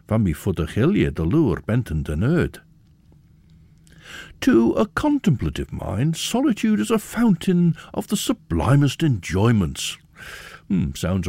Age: 60-79